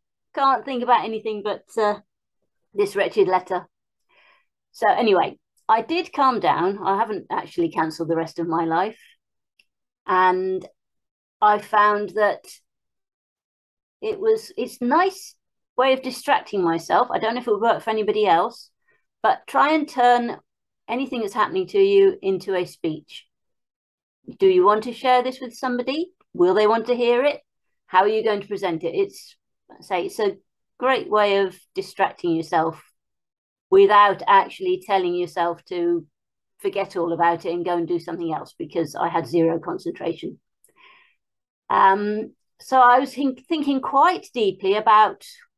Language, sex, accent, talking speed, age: English, female, British, 155 wpm, 40-59